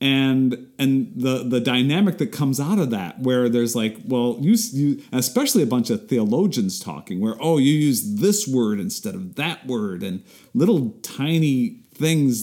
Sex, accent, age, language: male, American, 40-59, English